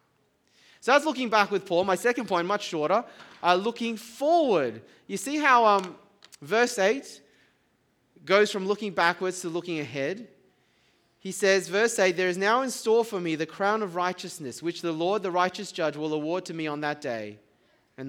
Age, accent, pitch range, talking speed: 20-39, Australian, 160-205 Hz, 185 wpm